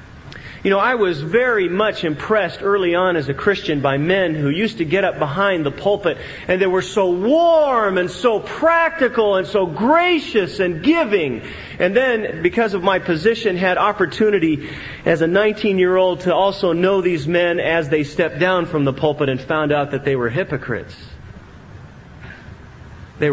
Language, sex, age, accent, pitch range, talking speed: English, male, 40-59, American, 140-205 Hz, 170 wpm